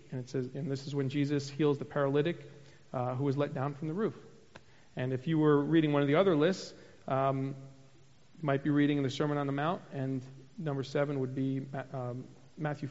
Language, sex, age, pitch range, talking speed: English, male, 40-59, 135-155 Hz, 215 wpm